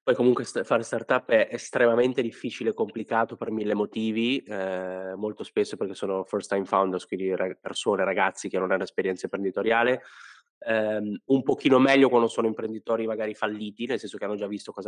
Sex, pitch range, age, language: male, 100-120 Hz, 20-39, Italian